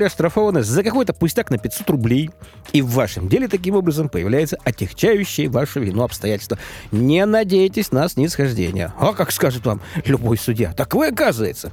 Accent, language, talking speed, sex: native, Russian, 165 wpm, male